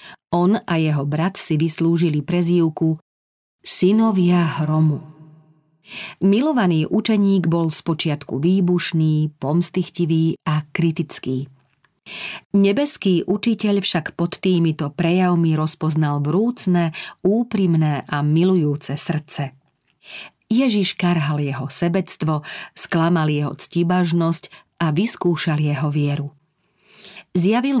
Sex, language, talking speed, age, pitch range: female, Slovak, 90 wpm, 40-59, 155-190 Hz